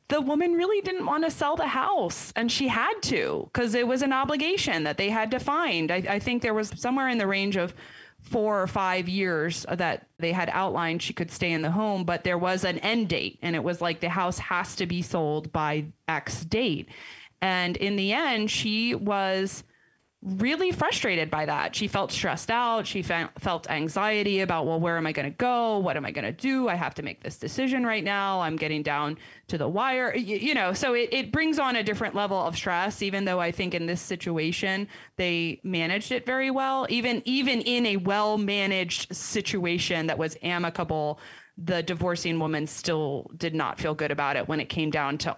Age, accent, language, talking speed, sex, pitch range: 30-49, American, English, 215 wpm, female, 165-225 Hz